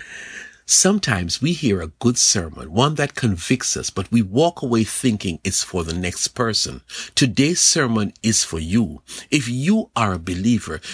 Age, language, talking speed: 50-69, English, 165 wpm